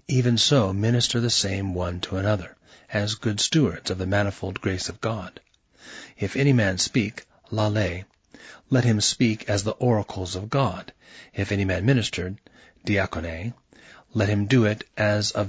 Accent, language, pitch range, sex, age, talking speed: American, English, 95-120 Hz, male, 40-59, 160 wpm